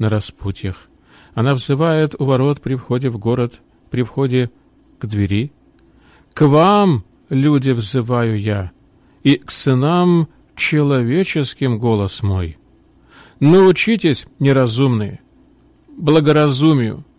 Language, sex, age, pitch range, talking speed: Russian, male, 40-59, 115-160 Hz, 95 wpm